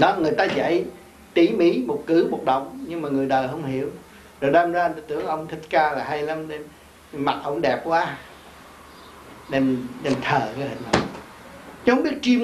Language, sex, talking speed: Vietnamese, male, 190 wpm